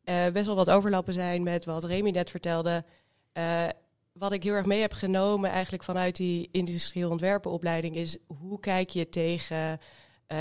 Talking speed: 175 wpm